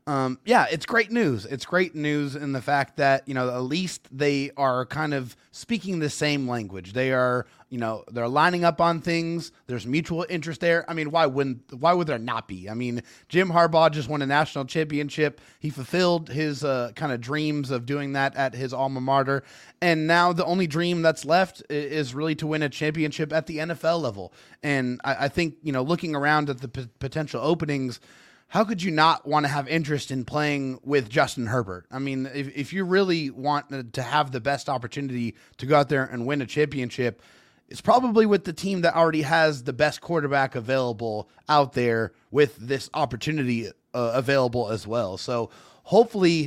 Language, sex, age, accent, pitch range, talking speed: English, male, 30-49, American, 130-160 Hz, 200 wpm